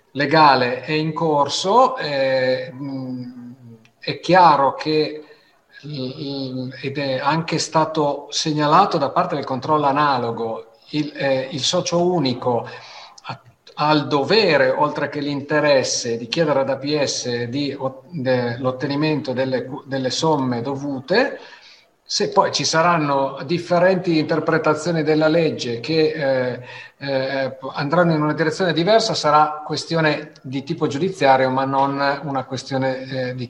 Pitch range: 130-155 Hz